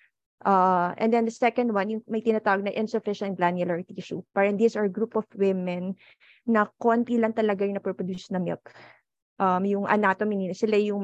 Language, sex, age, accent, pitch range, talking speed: English, female, 20-39, Filipino, 190-220 Hz, 185 wpm